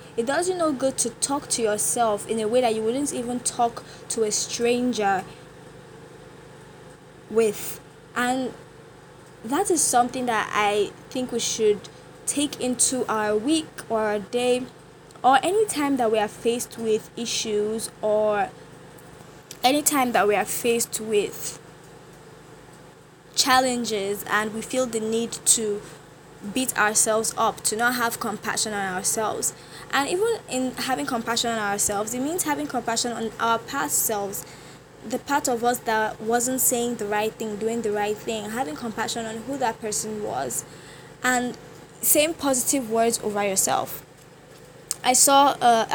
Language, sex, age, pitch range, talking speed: English, female, 10-29, 210-245 Hz, 150 wpm